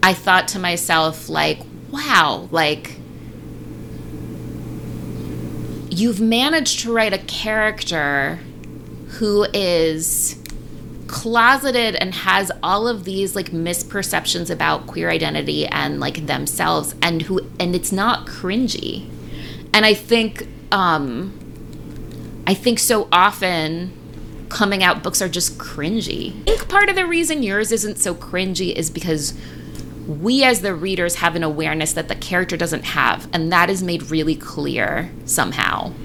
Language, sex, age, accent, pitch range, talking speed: English, female, 30-49, American, 150-205 Hz, 135 wpm